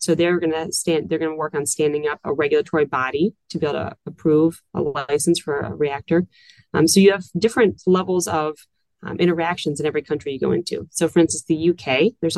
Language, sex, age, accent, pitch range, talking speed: English, female, 30-49, American, 155-175 Hz, 215 wpm